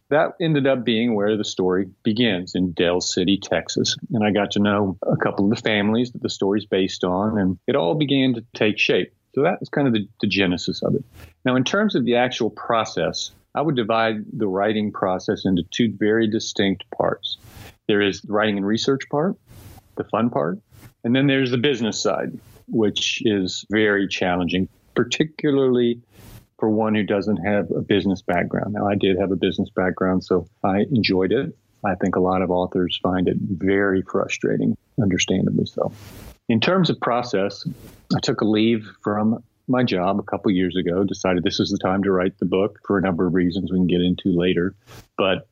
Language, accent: English, American